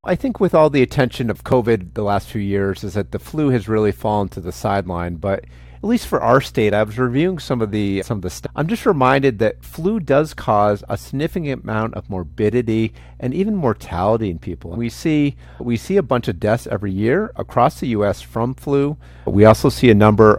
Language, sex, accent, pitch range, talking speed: English, male, American, 95-125 Hz, 220 wpm